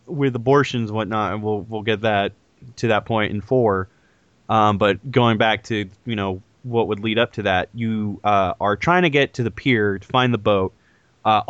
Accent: American